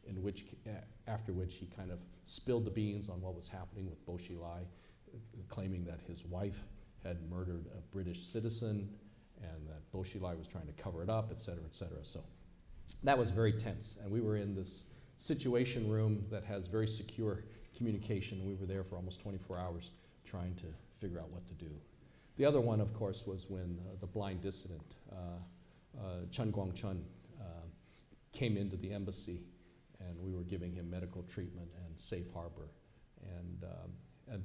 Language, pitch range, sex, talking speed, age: English, 90-110 Hz, male, 180 wpm, 50-69